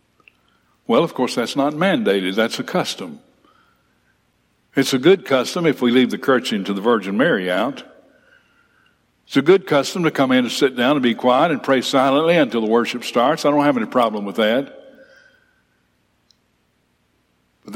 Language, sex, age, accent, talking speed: English, male, 60-79, American, 170 wpm